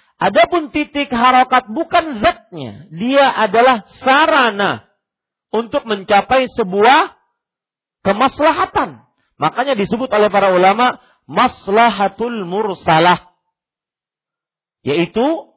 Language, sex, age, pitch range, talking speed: Malay, male, 40-59, 165-265 Hz, 75 wpm